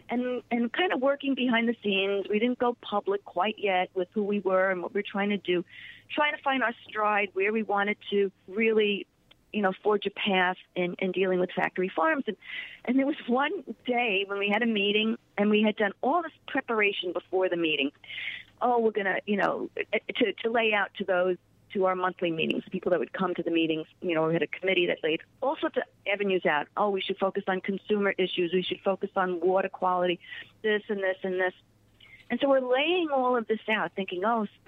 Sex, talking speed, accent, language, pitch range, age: female, 225 wpm, American, English, 185-250 Hz, 40-59